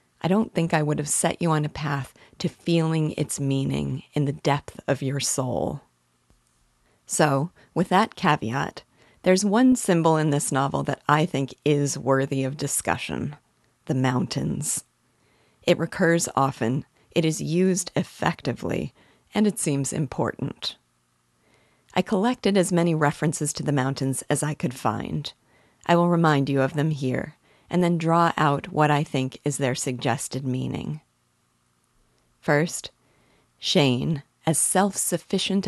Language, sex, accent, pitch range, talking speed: English, female, American, 135-165 Hz, 140 wpm